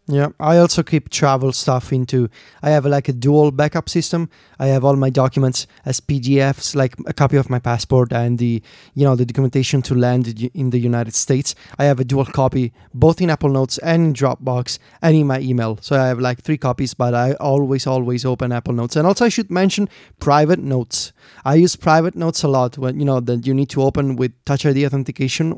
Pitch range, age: 130-155 Hz, 20-39